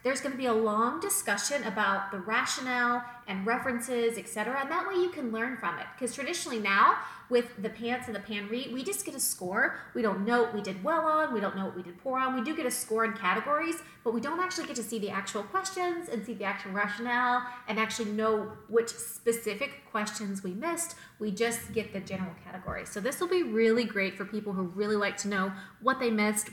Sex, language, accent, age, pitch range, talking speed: female, English, American, 30-49, 210-270 Hz, 235 wpm